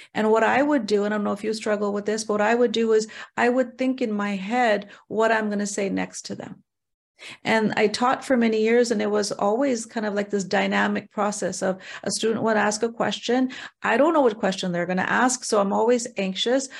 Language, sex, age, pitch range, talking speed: English, female, 40-59, 205-245 Hz, 250 wpm